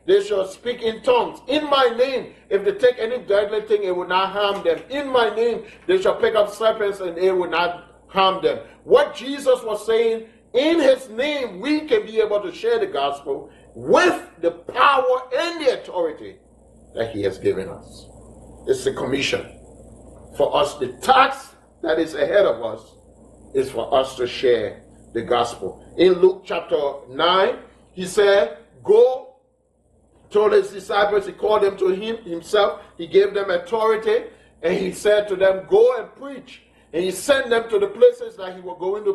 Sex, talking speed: male, 180 wpm